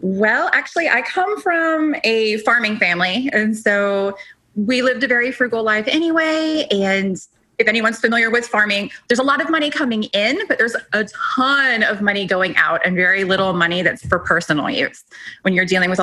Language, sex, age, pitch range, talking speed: English, female, 20-39, 180-245 Hz, 185 wpm